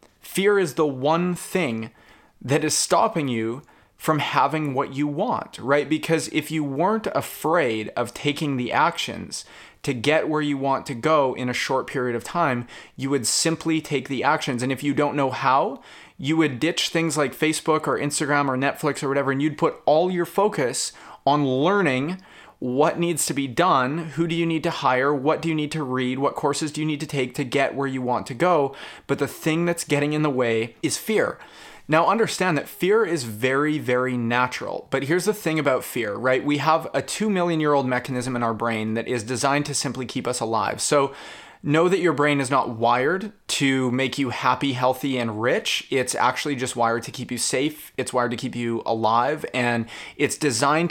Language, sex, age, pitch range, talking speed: English, male, 20-39, 125-155 Hz, 205 wpm